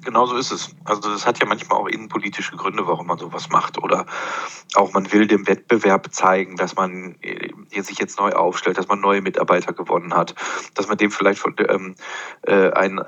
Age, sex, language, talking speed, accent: 40-59, male, German, 185 wpm, German